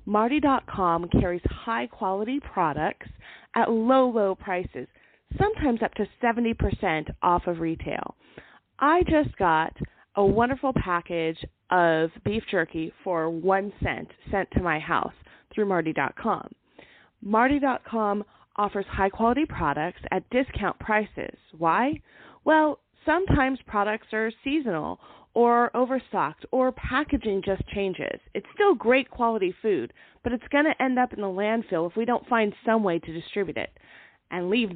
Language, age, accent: English, 30-49, American